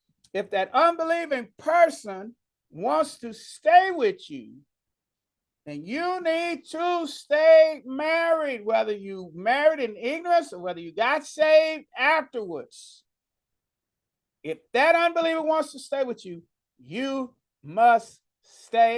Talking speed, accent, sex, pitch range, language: 115 wpm, American, male, 195-300 Hz, English